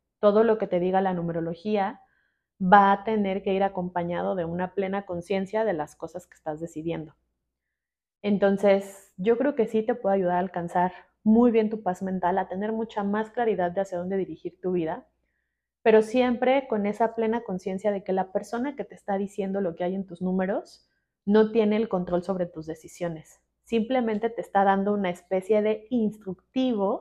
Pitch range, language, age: 180-215 Hz, Spanish, 30-49